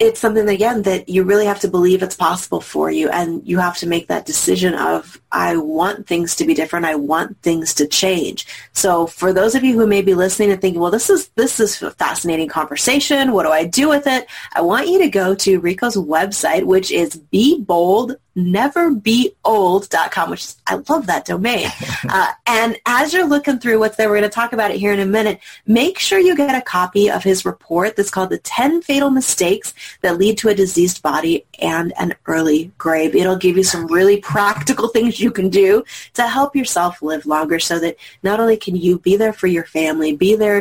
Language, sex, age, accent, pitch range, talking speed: English, female, 30-49, American, 175-235 Hz, 215 wpm